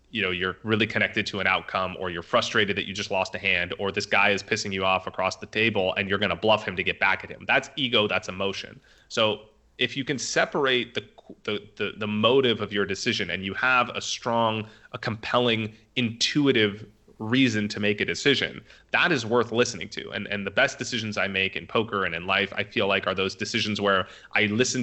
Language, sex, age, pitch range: English, male, 30-49, 95-115 Hz